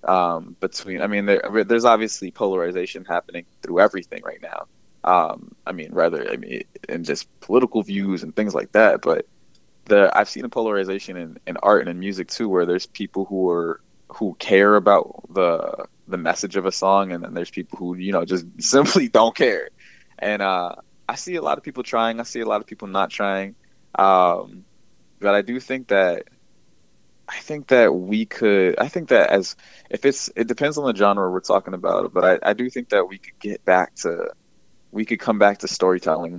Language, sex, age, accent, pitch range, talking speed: English, male, 20-39, American, 90-110 Hz, 205 wpm